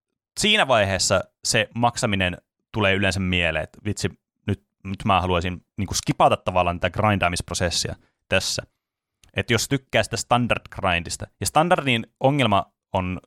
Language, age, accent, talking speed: Finnish, 30-49, native, 125 wpm